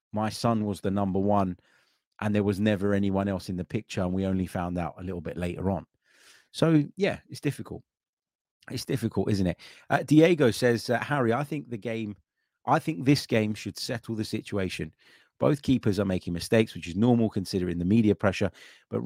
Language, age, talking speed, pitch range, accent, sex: English, 30-49, 200 wpm, 95-120 Hz, British, male